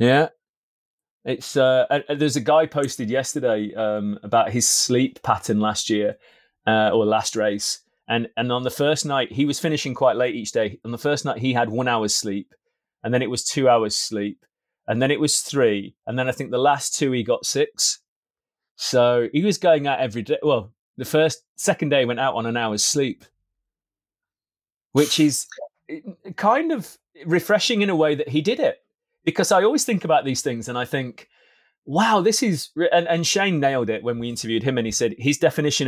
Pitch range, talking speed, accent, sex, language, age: 120-160 Hz, 200 wpm, British, male, English, 30-49